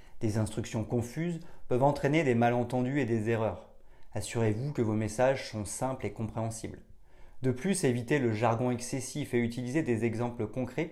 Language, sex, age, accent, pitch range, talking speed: French, male, 30-49, French, 105-130 Hz, 160 wpm